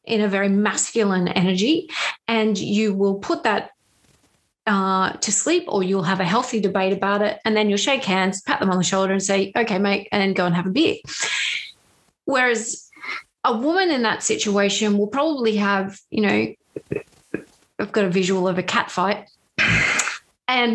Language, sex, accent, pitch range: English, female, Australian, 190-220 Hz